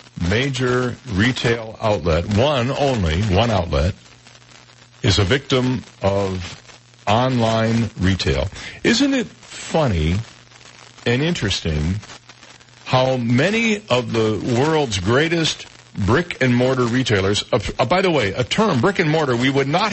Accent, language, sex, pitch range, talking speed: American, English, male, 105-150 Hz, 110 wpm